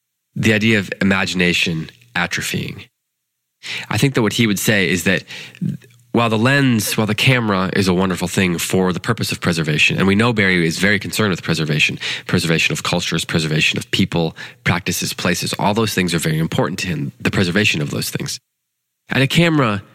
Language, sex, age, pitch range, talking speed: English, male, 20-39, 80-110 Hz, 185 wpm